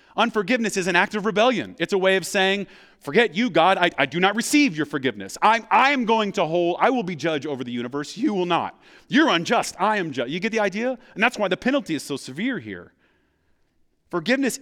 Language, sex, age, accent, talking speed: English, male, 30-49, American, 230 wpm